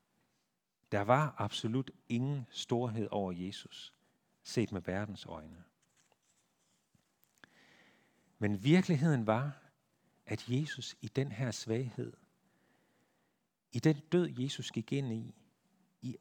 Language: Danish